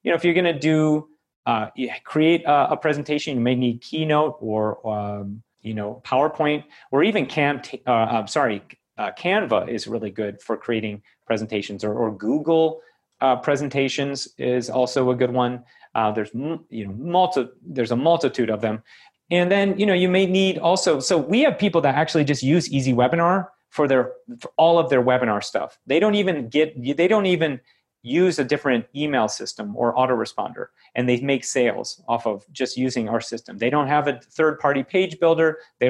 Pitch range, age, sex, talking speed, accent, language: 120-155 Hz, 30-49, male, 185 wpm, American, English